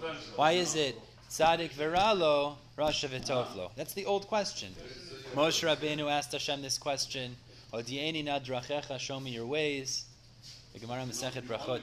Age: 20-39